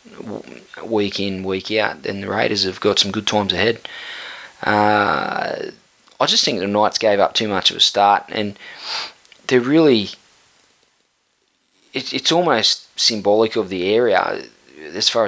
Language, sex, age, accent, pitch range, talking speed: English, male, 20-39, Australian, 95-105 Hz, 150 wpm